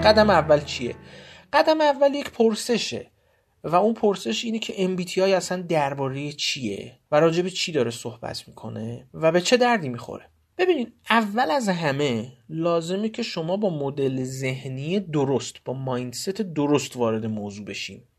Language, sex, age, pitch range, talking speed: Persian, male, 30-49, 125-205 Hz, 150 wpm